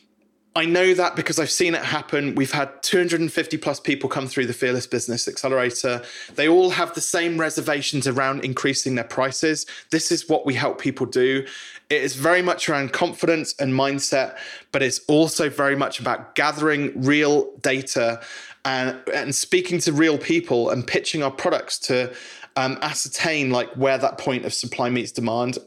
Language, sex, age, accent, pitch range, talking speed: English, male, 20-39, British, 130-160 Hz, 170 wpm